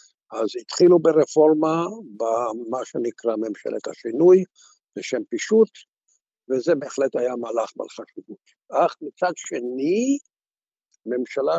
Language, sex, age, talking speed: Hebrew, male, 60-79, 95 wpm